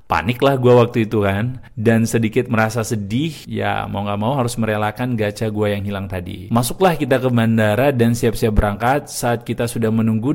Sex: male